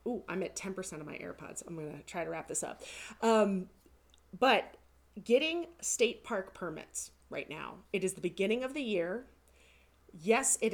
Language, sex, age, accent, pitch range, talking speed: English, female, 30-49, American, 180-245 Hz, 180 wpm